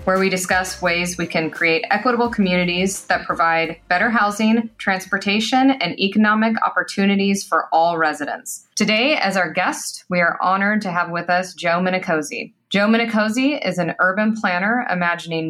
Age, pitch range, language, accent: 20-39, 175-215 Hz, English, American